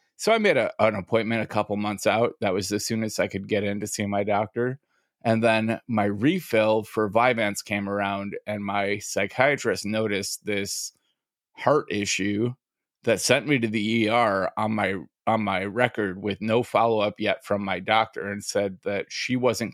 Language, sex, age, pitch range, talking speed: English, male, 30-49, 100-115 Hz, 190 wpm